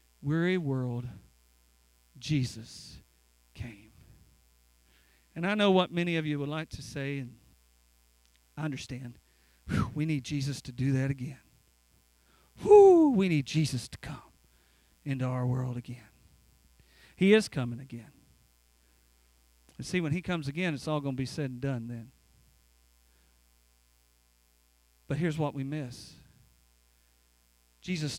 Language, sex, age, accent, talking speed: English, male, 40-59, American, 125 wpm